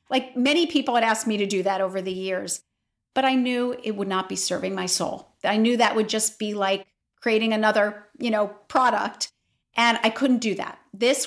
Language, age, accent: English, 40-59, American